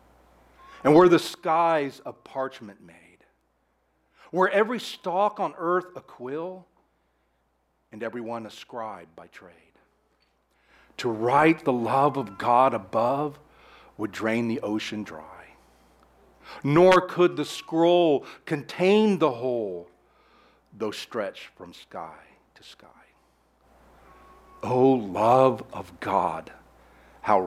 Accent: American